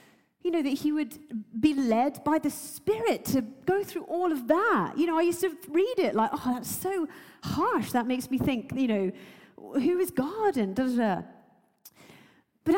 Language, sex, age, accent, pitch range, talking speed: English, female, 40-59, British, 250-365 Hz, 195 wpm